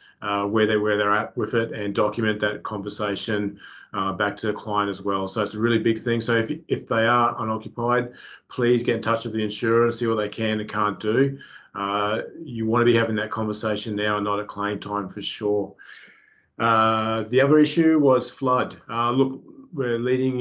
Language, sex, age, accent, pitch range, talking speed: English, male, 30-49, Australian, 105-120 Hz, 210 wpm